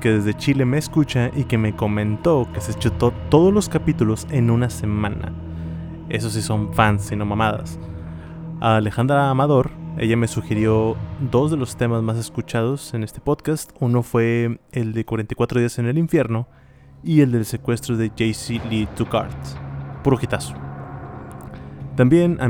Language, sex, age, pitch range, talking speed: Spanish, male, 20-39, 105-130 Hz, 165 wpm